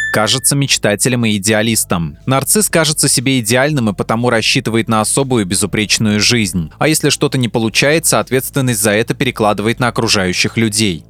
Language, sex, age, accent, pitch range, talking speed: Russian, male, 20-39, native, 105-135 Hz, 145 wpm